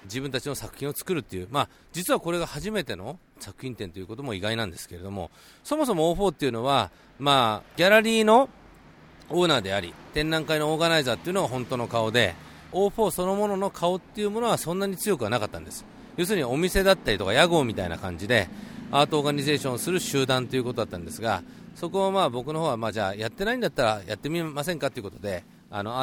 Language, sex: Japanese, male